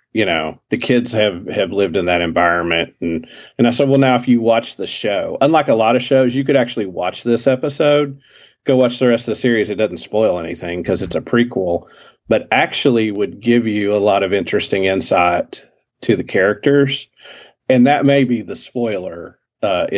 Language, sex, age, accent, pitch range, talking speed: English, male, 40-59, American, 95-130 Hz, 200 wpm